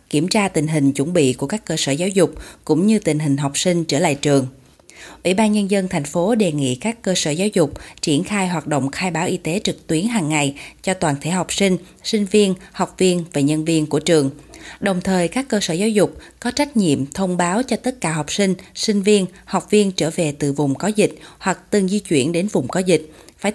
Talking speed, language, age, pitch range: 245 wpm, Vietnamese, 20-39, 155-210 Hz